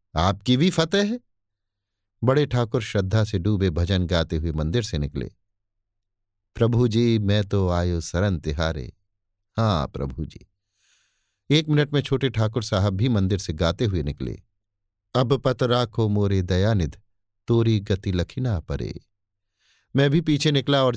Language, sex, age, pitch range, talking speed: Hindi, male, 50-69, 95-115 Hz, 140 wpm